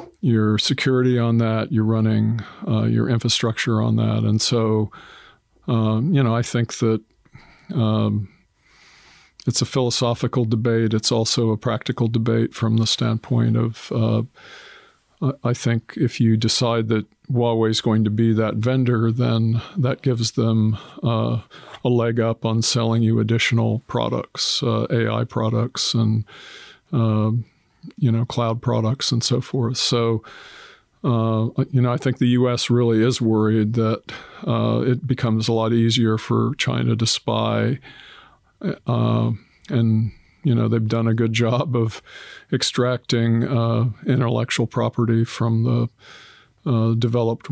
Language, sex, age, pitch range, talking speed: English, male, 50-69, 115-120 Hz, 145 wpm